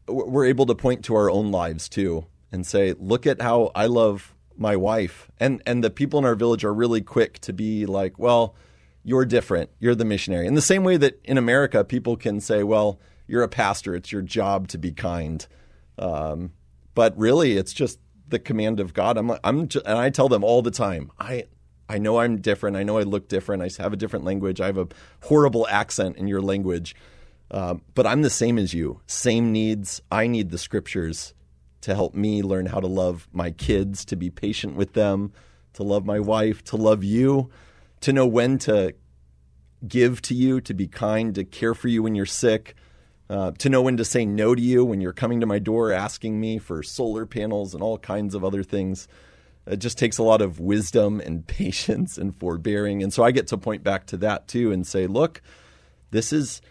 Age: 30-49